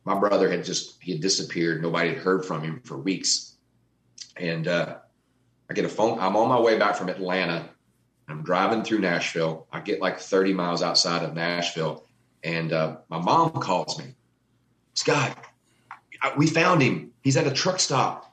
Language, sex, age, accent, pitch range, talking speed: English, male, 30-49, American, 90-130 Hz, 175 wpm